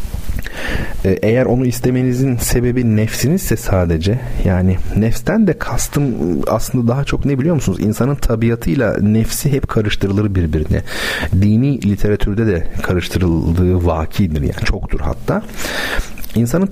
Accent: native